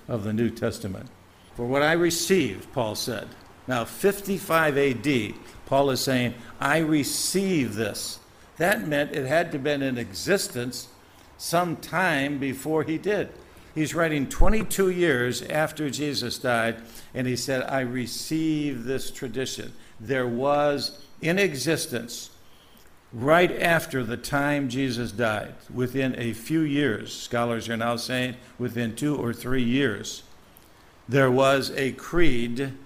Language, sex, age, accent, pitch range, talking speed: English, male, 60-79, American, 115-150 Hz, 135 wpm